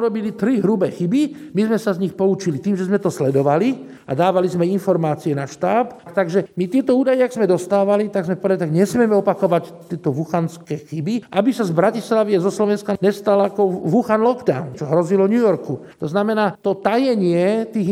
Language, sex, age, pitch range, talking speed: Slovak, male, 50-69, 170-215 Hz, 190 wpm